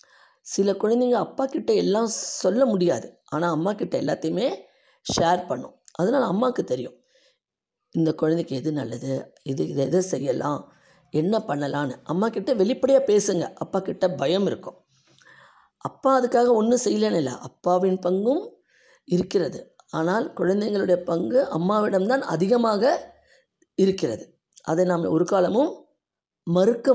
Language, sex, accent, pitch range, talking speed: Tamil, female, native, 165-230 Hz, 115 wpm